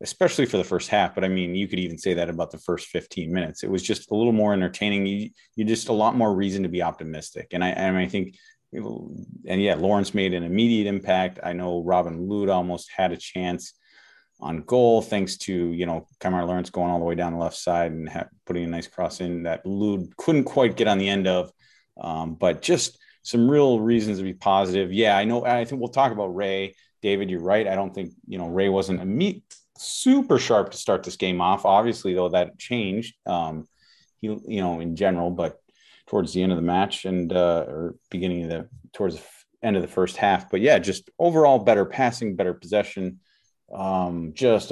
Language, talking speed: English, 225 wpm